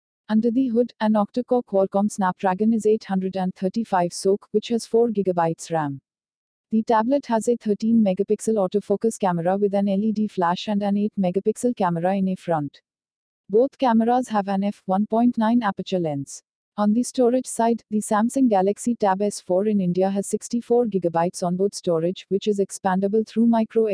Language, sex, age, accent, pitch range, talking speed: English, female, 50-69, Indian, 185-225 Hz, 150 wpm